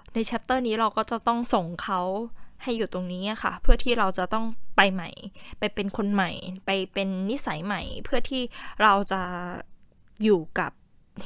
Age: 10-29